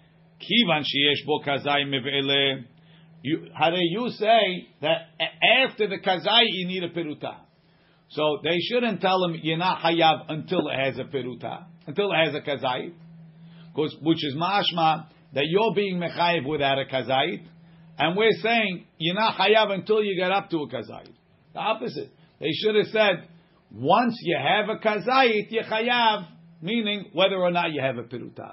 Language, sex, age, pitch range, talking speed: English, male, 50-69, 145-195 Hz, 160 wpm